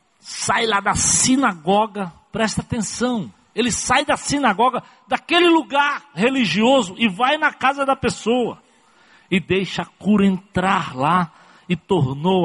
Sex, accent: male, Brazilian